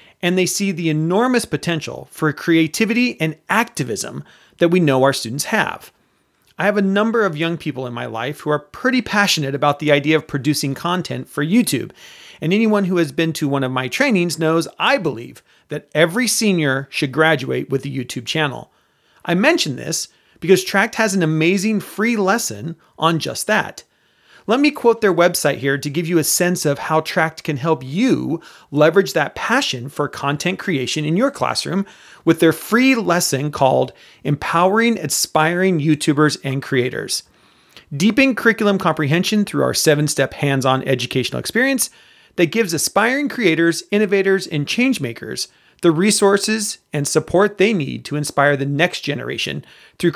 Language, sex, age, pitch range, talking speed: English, male, 40-59, 150-200 Hz, 165 wpm